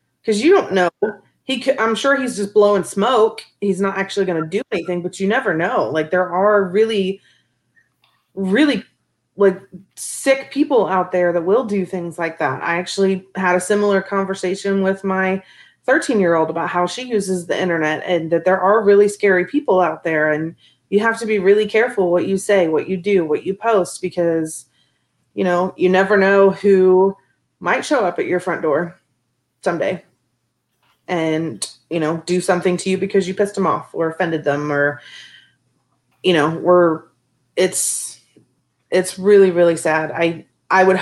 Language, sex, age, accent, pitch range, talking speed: English, female, 30-49, American, 170-195 Hz, 180 wpm